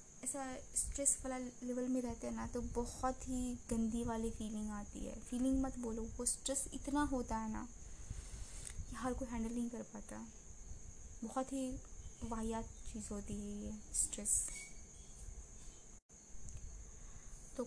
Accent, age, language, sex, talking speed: native, 20-39, Hindi, female, 140 wpm